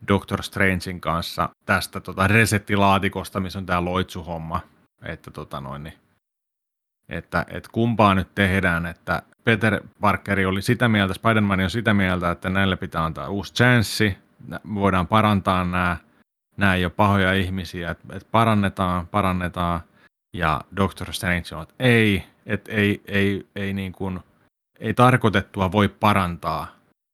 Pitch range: 85-100 Hz